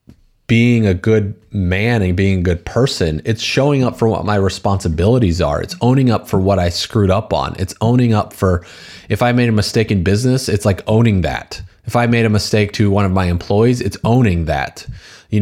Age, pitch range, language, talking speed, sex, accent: 30-49, 90-115 Hz, English, 215 wpm, male, American